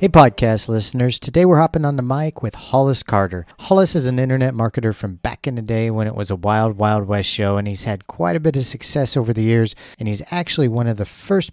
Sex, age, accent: male, 40-59, American